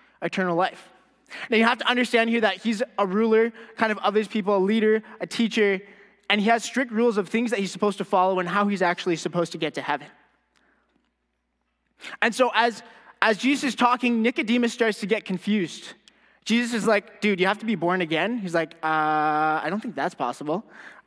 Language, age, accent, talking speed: English, 20-39, American, 200 wpm